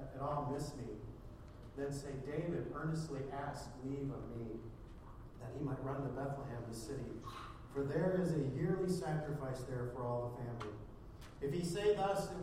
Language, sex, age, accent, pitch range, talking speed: English, male, 50-69, American, 120-160 Hz, 175 wpm